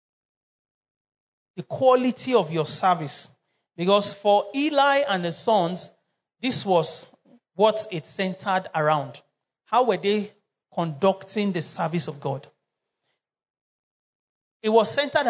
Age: 40-59